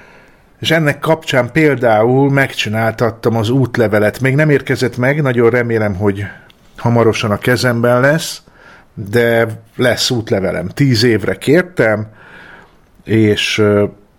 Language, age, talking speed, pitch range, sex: Hungarian, 50-69, 105 wpm, 110-130 Hz, male